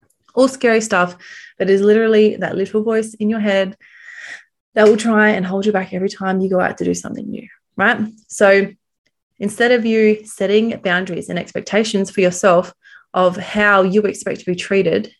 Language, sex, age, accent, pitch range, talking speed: English, female, 20-39, Australian, 190-225 Hz, 180 wpm